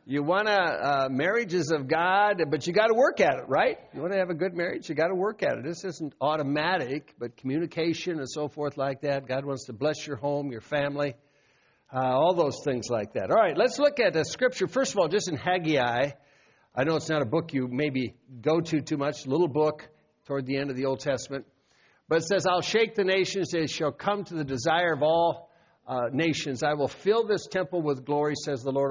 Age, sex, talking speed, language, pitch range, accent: 60-79, male, 235 wpm, English, 140-180 Hz, American